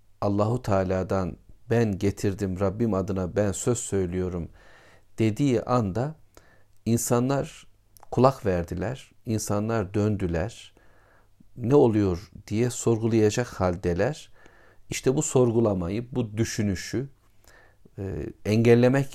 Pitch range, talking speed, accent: 95-120 Hz, 85 wpm, native